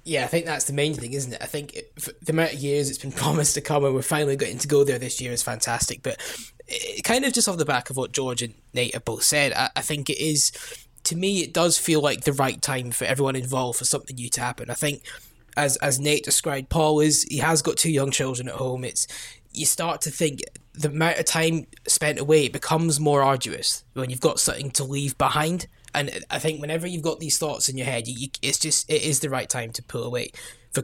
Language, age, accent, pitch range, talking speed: English, 10-29, British, 130-155 Hz, 255 wpm